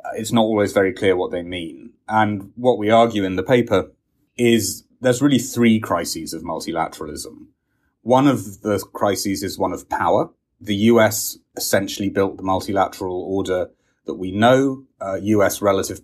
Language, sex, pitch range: English, male, 95-115 Hz